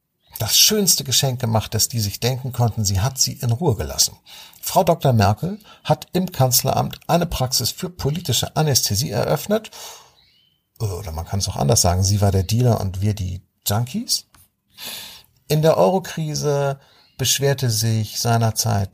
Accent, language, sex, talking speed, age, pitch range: German, German, male, 150 wpm, 50-69, 110-145 Hz